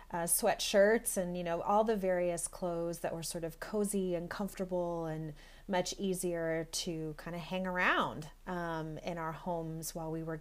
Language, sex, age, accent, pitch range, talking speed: English, female, 30-49, American, 165-200 Hz, 180 wpm